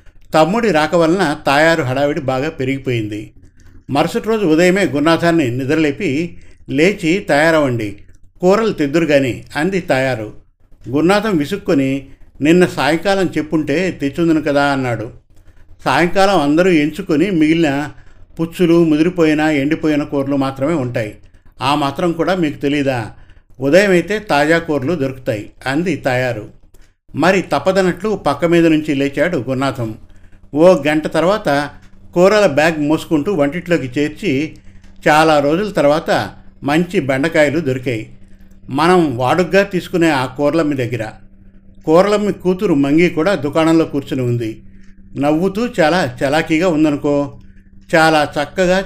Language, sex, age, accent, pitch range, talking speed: Telugu, male, 50-69, native, 125-165 Hz, 110 wpm